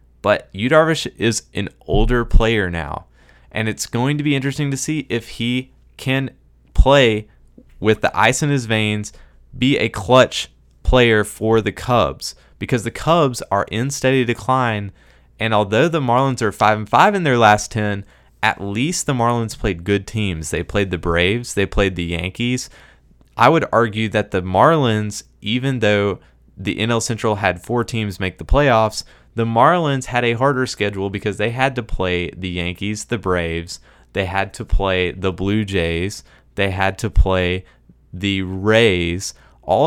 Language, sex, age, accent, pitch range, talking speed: English, male, 20-39, American, 90-120 Hz, 165 wpm